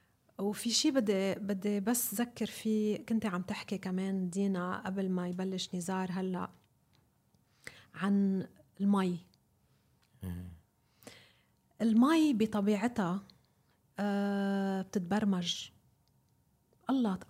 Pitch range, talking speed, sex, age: 190-230 Hz, 80 wpm, female, 30-49